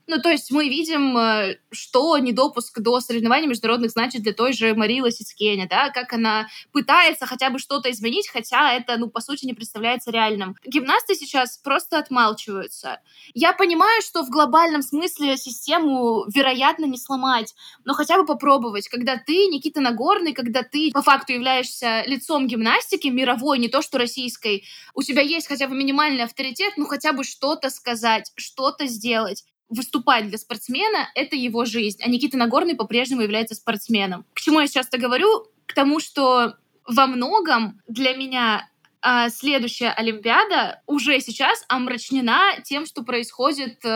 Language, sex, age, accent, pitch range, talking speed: Russian, female, 20-39, native, 230-285 Hz, 155 wpm